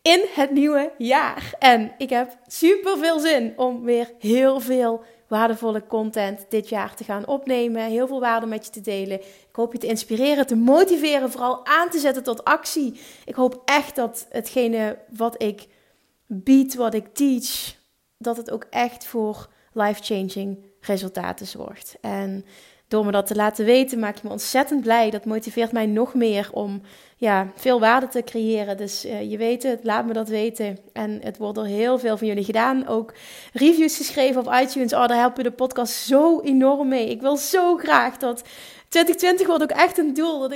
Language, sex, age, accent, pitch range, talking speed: Dutch, female, 30-49, Dutch, 215-270 Hz, 185 wpm